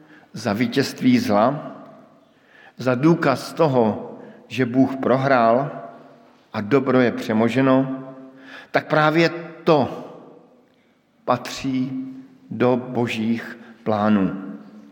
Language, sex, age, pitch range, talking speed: Slovak, male, 50-69, 120-150 Hz, 80 wpm